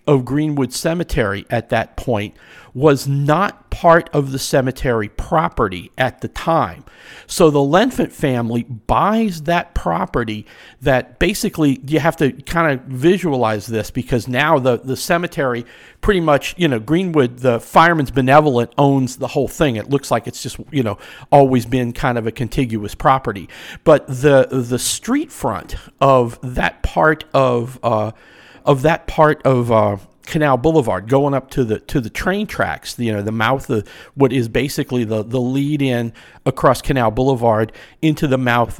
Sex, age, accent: male, 50-69, American